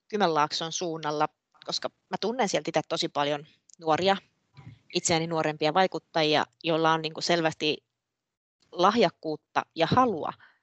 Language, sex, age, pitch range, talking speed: Finnish, female, 20-39, 160-185 Hz, 100 wpm